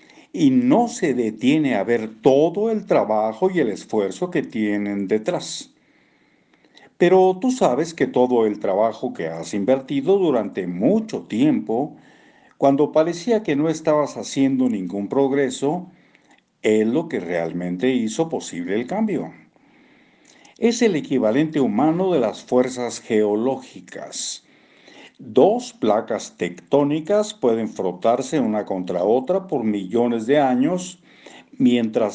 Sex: male